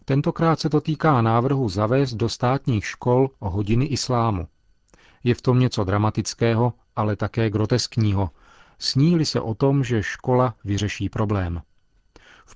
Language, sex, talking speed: Czech, male, 135 wpm